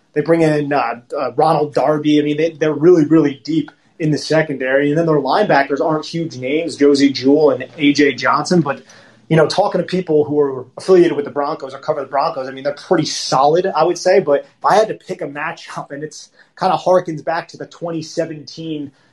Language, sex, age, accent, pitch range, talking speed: English, male, 30-49, American, 140-165 Hz, 220 wpm